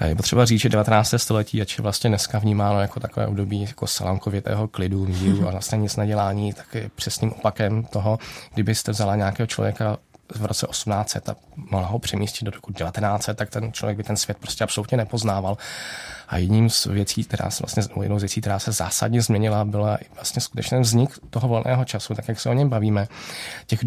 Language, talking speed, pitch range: Czech, 195 wpm, 100-120 Hz